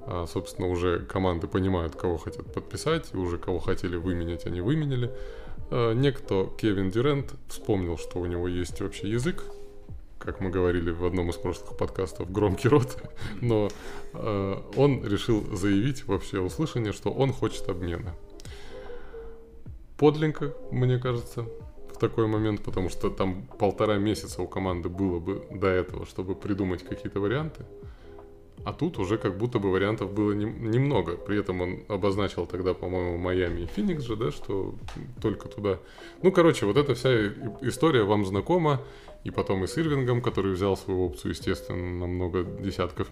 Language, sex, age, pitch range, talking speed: Russian, male, 20-39, 90-120 Hz, 160 wpm